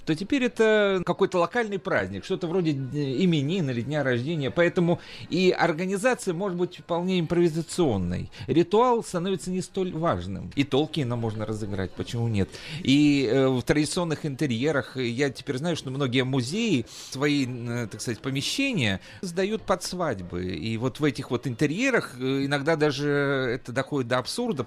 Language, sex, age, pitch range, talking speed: Russian, male, 40-59, 125-175 Hz, 145 wpm